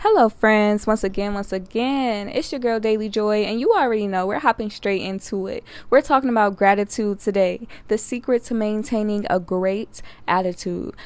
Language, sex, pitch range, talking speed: English, female, 195-245 Hz, 175 wpm